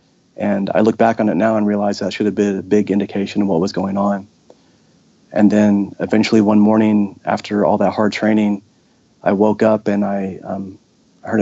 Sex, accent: male, American